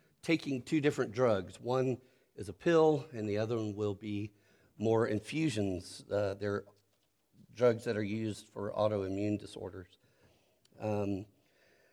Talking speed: 130 wpm